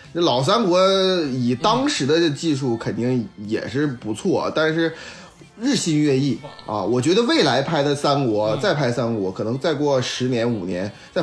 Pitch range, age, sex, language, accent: 125-180 Hz, 20-39, male, Chinese, native